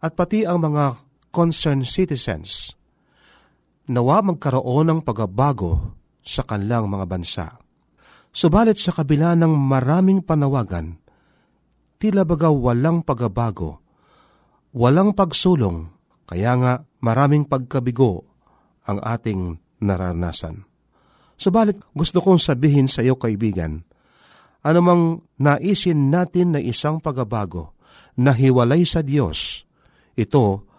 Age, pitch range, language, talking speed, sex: 40-59, 105-160 Hz, Filipino, 100 wpm, male